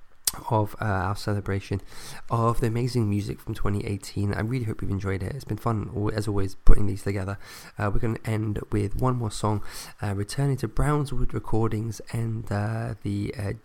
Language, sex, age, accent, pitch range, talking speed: English, male, 20-39, British, 105-120 Hz, 185 wpm